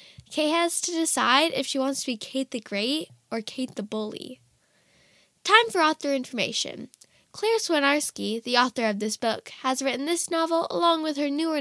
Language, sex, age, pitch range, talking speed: English, female, 10-29, 225-300 Hz, 180 wpm